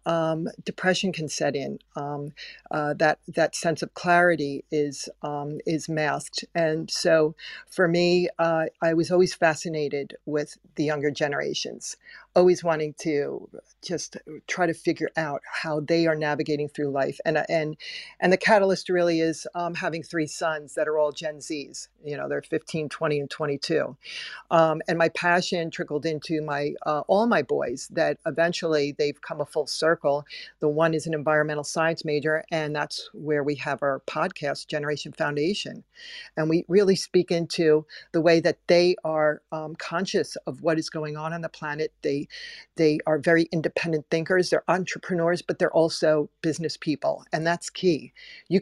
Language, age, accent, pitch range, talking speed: English, 50-69, American, 150-170 Hz, 170 wpm